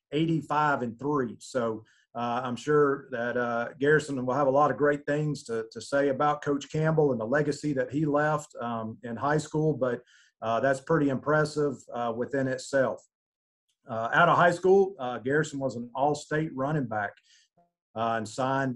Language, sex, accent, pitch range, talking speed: English, male, American, 125-150 Hz, 175 wpm